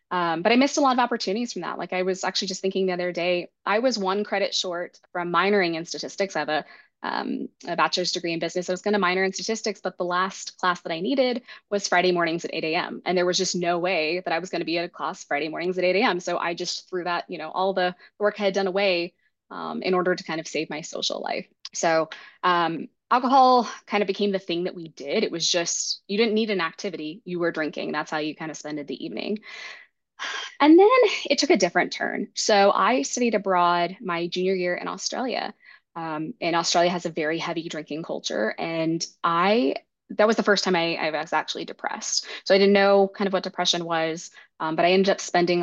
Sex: female